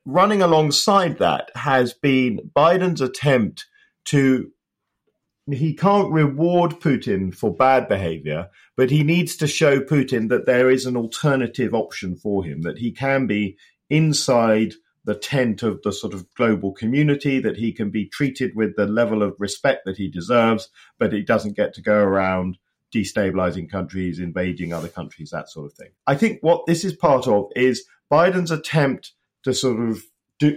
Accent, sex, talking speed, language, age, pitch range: British, male, 165 wpm, English, 40-59, 100-145 Hz